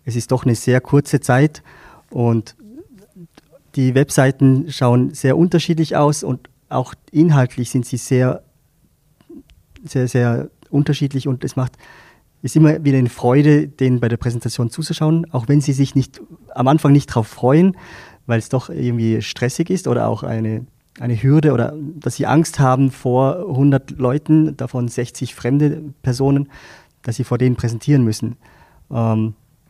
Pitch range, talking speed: 120-145 Hz, 155 wpm